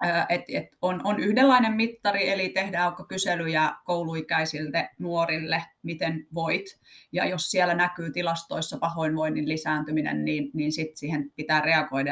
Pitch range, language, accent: 150-185 Hz, Finnish, native